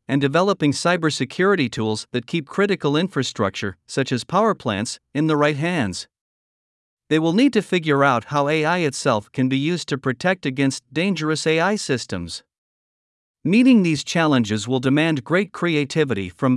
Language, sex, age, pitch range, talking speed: Vietnamese, male, 50-69, 130-170 Hz, 150 wpm